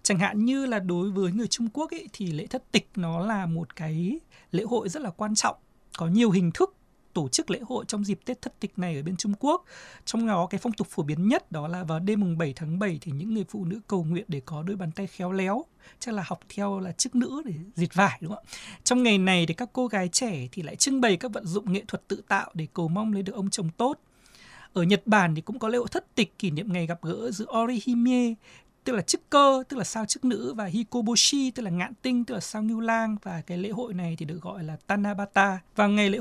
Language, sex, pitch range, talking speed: Vietnamese, male, 180-235 Hz, 270 wpm